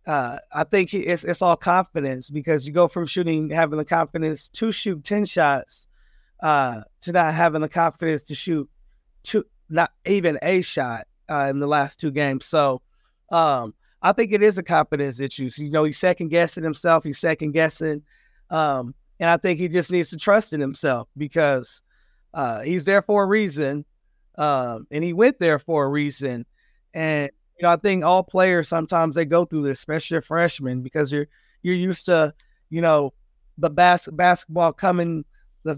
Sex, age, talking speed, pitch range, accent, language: male, 20-39, 185 wpm, 150-180 Hz, American, English